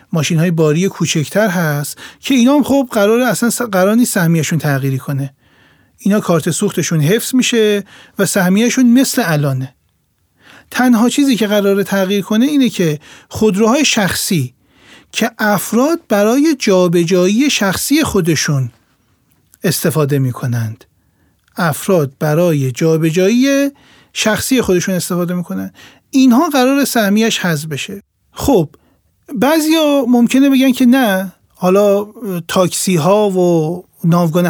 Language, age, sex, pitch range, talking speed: Persian, 40-59, male, 165-230 Hz, 110 wpm